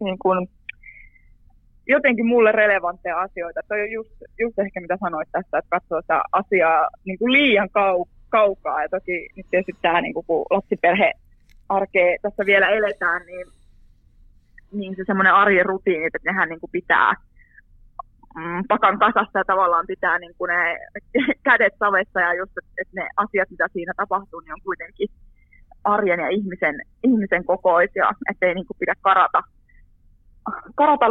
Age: 20-39